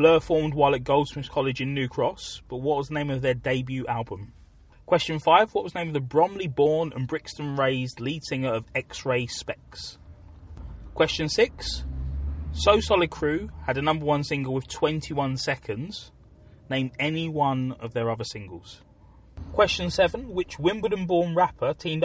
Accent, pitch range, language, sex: British, 100-150 Hz, English, male